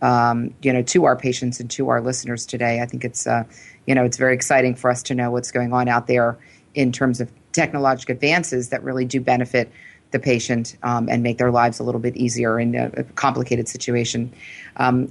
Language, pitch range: English, 125-140 Hz